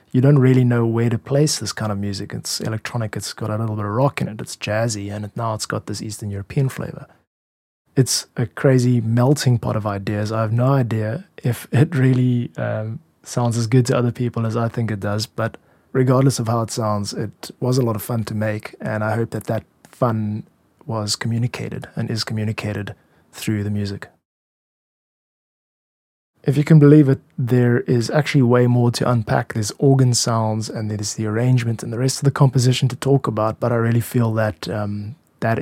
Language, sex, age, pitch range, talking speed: English, male, 20-39, 110-125 Hz, 205 wpm